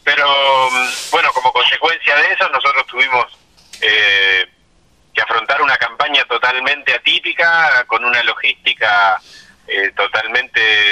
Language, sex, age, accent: Spanish, male, 30-49, Argentinian